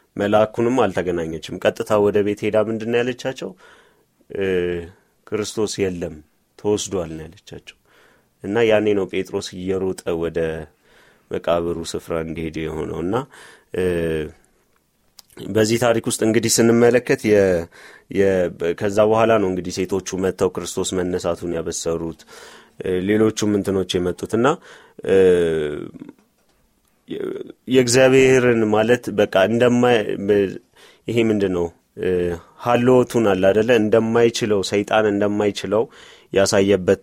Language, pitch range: Amharic, 90-110 Hz